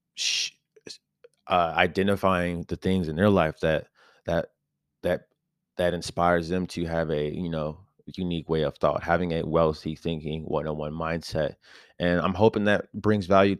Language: English